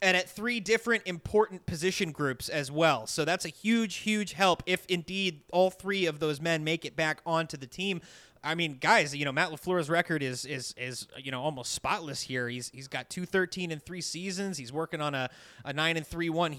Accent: American